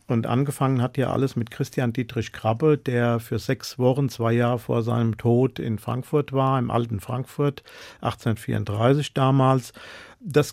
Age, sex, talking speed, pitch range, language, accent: 50-69, male, 155 wpm, 120-140 Hz, German, German